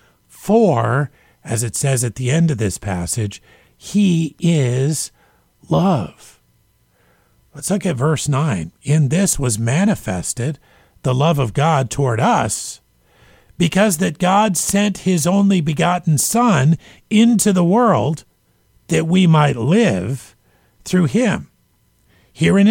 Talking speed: 120 wpm